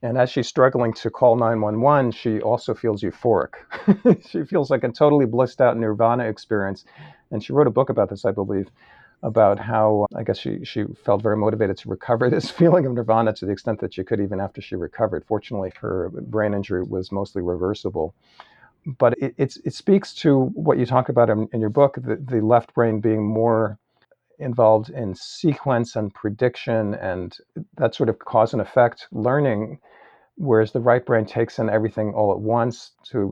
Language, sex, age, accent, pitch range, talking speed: English, male, 50-69, American, 110-125 Hz, 195 wpm